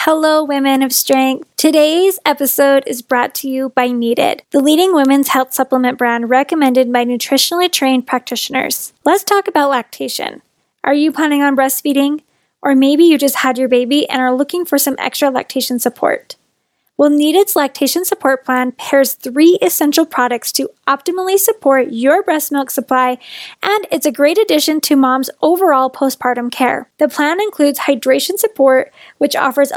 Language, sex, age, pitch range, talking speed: English, female, 10-29, 260-315 Hz, 165 wpm